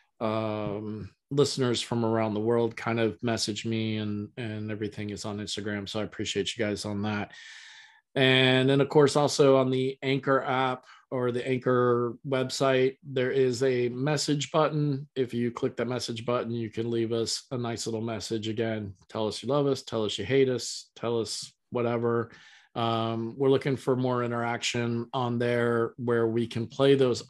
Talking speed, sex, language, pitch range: 180 wpm, male, English, 115-140 Hz